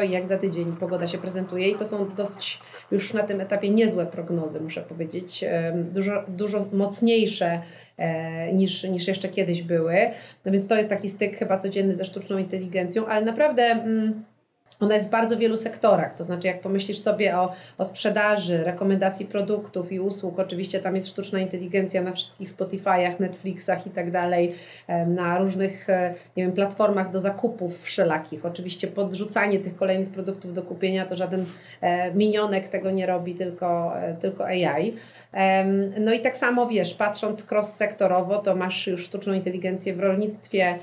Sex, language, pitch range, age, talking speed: female, Polish, 180-200 Hz, 30-49, 160 wpm